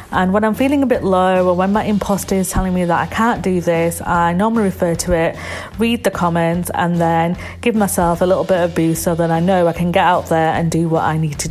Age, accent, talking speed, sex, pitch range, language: 40-59, British, 265 wpm, female, 170-210 Hz, English